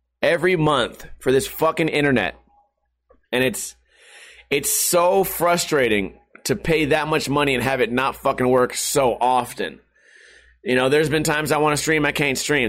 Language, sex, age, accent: English, male, 30-49, American